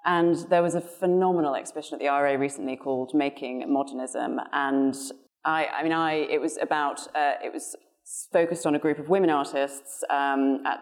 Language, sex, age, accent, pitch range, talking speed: English, female, 30-49, British, 145-170 Hz, 185 wpm